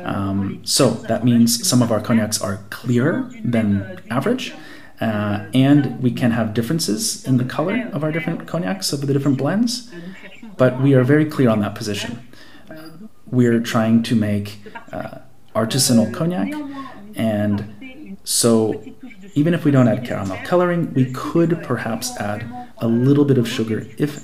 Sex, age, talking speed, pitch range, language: male, 30-49, 155 wpm, 110-155 Hz, English